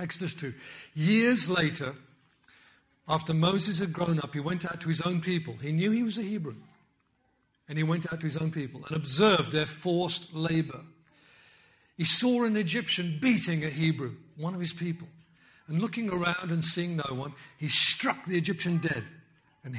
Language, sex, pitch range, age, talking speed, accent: English, male, 140-180 Hz, 50-69, 180 wpm, British